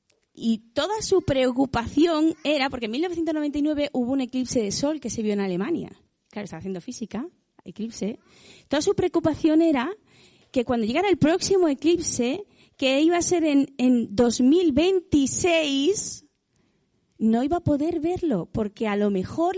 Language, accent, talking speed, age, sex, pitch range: Spanish, Spanish, 150 wpm, 20-39, female, 240-325 Hz